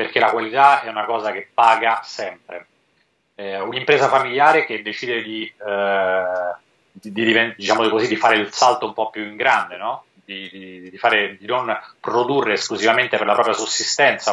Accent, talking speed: native, 140 wpm